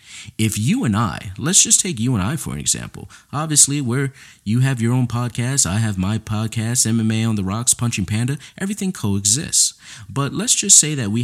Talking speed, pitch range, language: 205 wpm, 100-140 Hz, English